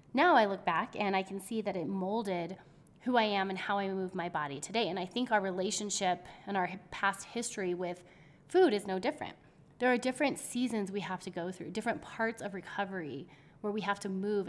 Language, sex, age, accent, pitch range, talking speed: English, female, 20-39, American, 180-220 Hz, 220 wpm